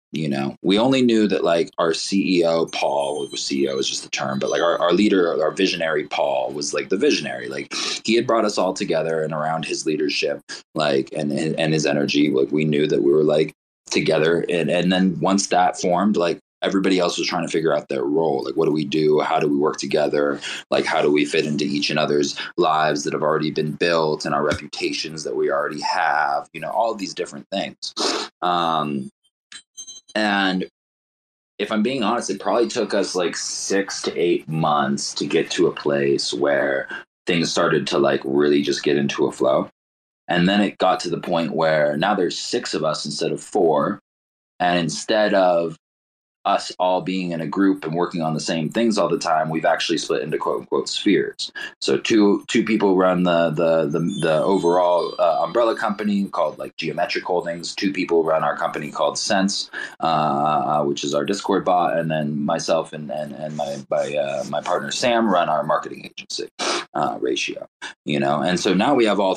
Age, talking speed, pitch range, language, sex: 20-39, 200 wpm, 75-95 Hz, English, male